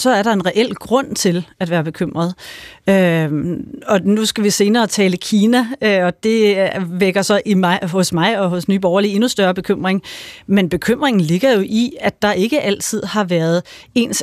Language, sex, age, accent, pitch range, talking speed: Danish, female, 30-49, native, 180-220 Hz, 175 wpm